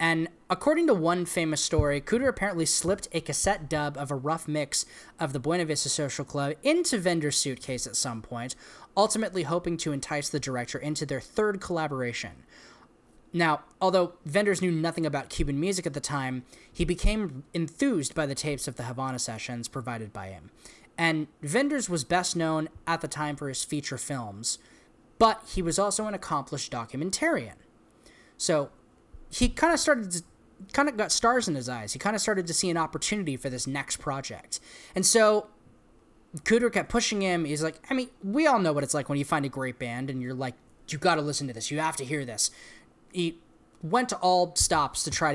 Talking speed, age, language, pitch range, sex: 195 wpm, 10-29, English, 135-185 Hz, male